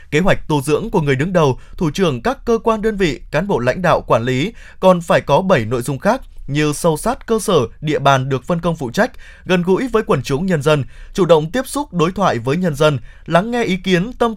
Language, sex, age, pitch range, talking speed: Vietnamese, male, 20-39, 140-195 Hz, 255 wpm